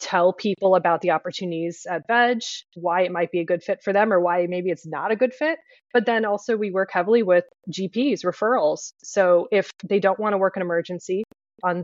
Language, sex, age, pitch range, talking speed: English, female, 20-39, 175-210 Hz, 220 wpm